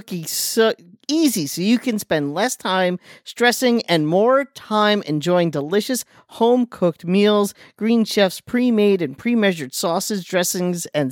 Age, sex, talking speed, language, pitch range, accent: 40-59, male, 125 wpm, English, 165-210 Hz, American